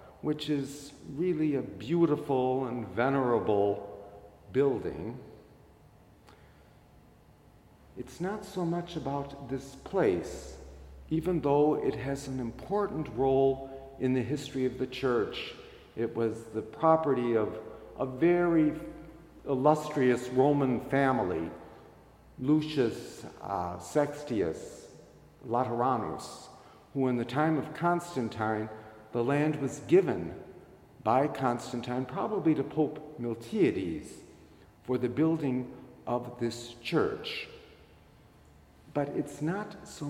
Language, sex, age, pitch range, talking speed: English, male, 50-69, 125-155 Hz, 100 wpm